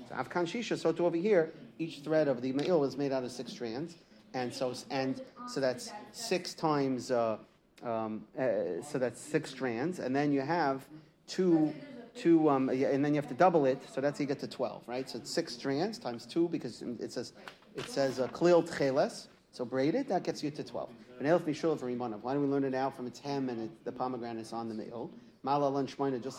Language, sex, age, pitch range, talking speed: English, male, 40-59, 125-160 Hz, 205 wpm